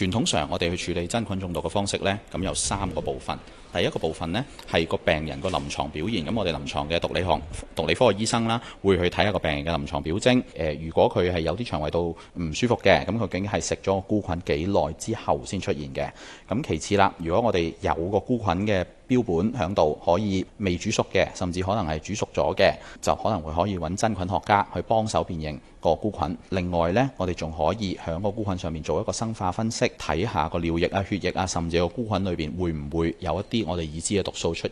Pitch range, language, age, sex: 80-100 Hz, Chinese, 30-49, male